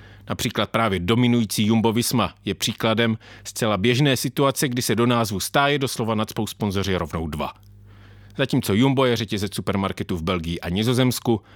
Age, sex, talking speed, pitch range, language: 40-59, male, 150 wpm, 100-120 Hz, English